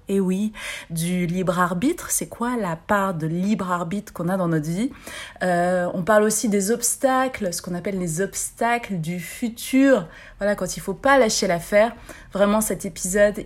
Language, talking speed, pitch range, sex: French, 180 wpm, 185-235 Hz, female